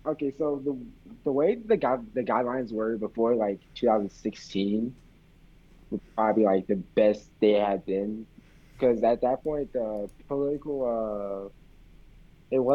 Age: 20-39